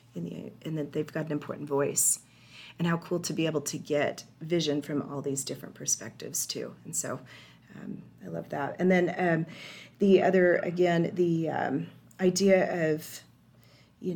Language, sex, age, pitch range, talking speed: English, female, 40-59, 145-175 Hz, 165 wpm